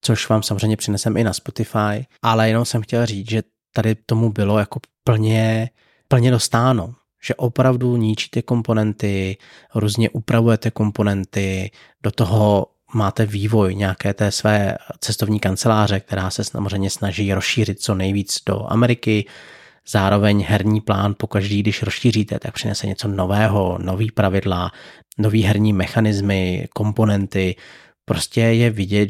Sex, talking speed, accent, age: male, 130 wpm, native, 30-49